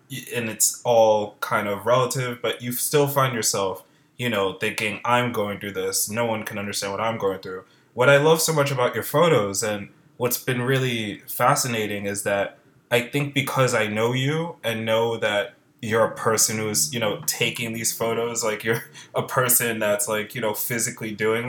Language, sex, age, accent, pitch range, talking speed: English, male, 20-39, American, 110-130 Hz, 195 wpm